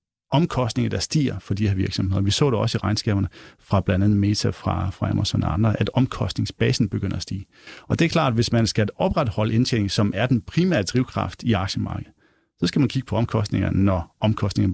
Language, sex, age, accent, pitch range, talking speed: Danish, male, 30-49, native, 105-130 Hz, 210 wpm